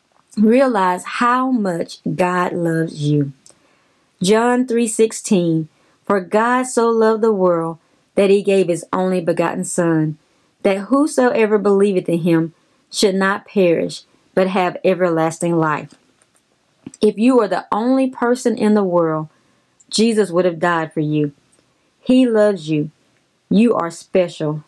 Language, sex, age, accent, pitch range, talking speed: English, female, 30-49, American, 165-220 Hz, 135 wpm